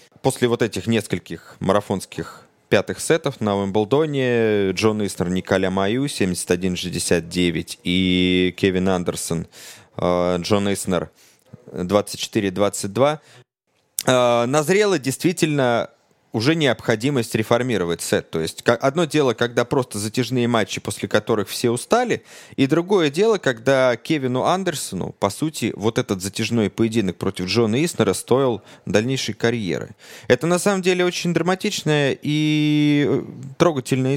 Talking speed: 110 wpm